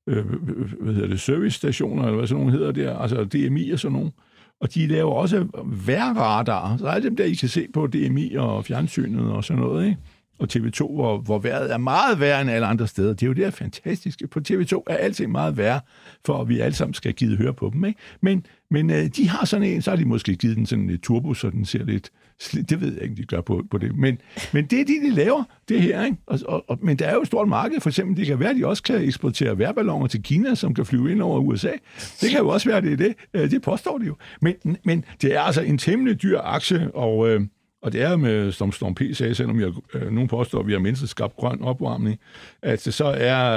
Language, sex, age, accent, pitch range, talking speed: Danish, male, 60-79, native, 115-165 Hz, 250 wpm